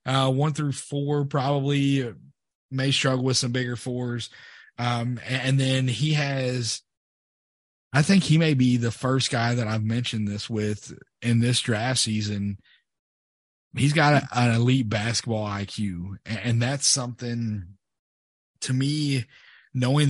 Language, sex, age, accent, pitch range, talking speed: English, male, 30-49, American, 110-130 Hz, 140 wpm